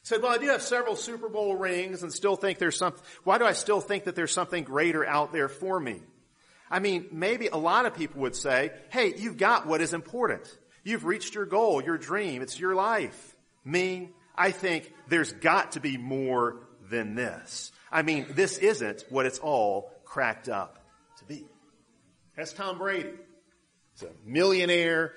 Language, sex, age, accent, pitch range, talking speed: English, male, 40-59, American, 150-200 Hz, 185 wpm